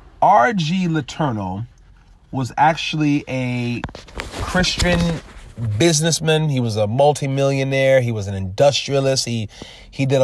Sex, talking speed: male, 105 wpm